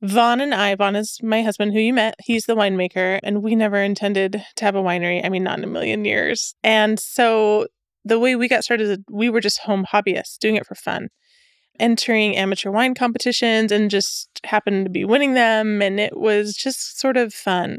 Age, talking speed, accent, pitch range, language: 20-39, 210 wpm, American, 200-245 Hz, English